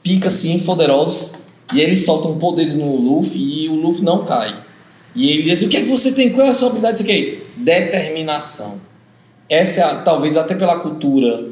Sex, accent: male, Brazilian